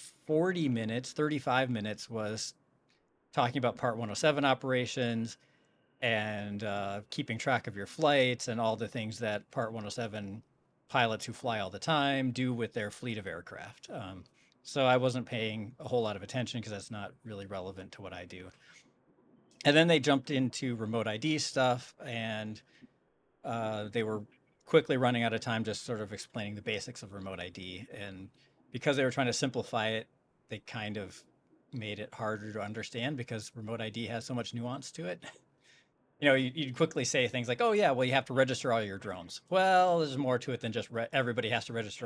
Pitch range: 105-130 Hz